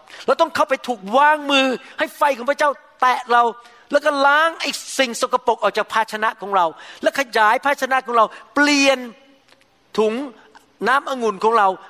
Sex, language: male, Thai